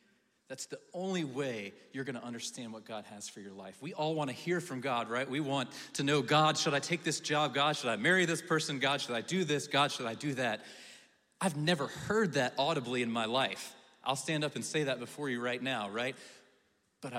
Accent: American